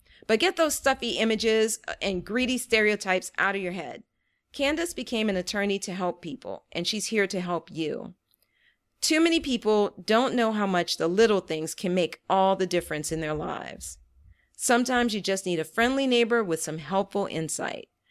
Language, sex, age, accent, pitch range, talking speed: English, female, 40-59, American, 170-225 Hz, 180 wpm